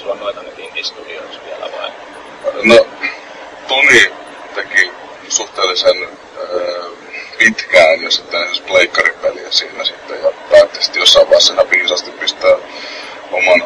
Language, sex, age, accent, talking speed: Finnish, male, 30-49, native, 90 wpm